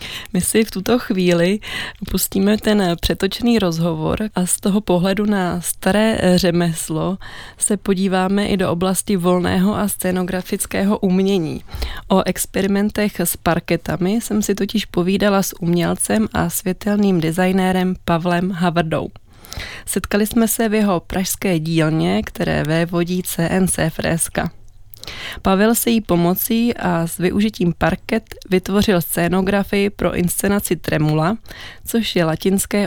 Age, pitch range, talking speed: 20-39, 175-205 Hz, 120 wpm